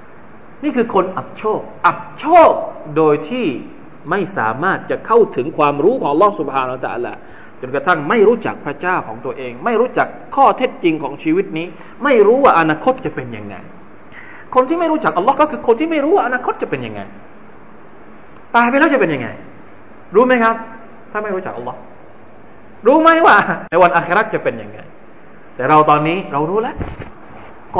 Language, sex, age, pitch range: Thai, male, 20-39, 175-290 Hz